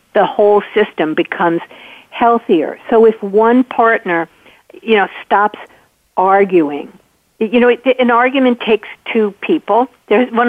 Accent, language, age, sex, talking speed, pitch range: American, English, 50-69, female, 135 wpm, 180-240 Hz